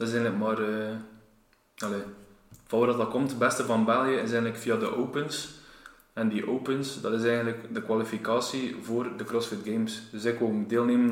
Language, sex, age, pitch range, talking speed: Dutch, male, 20-39, 110-125 Hz, 195 wpm